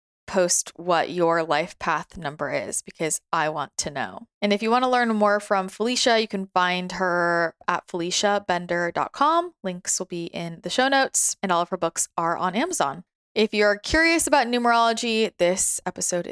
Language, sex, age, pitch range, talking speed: English, female, 20-39, 165-205 Hz, 180 wpm